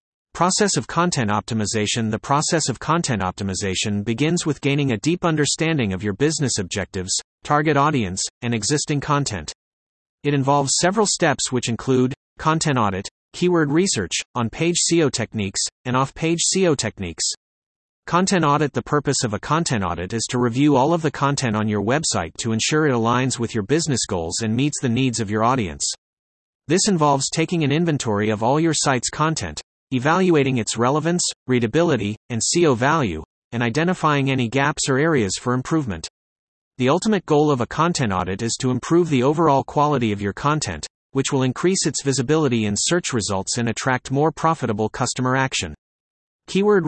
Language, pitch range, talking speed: English, 110-155 Hz, 170 wpm